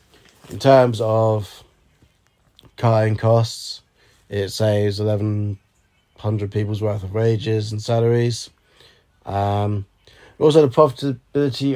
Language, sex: English, male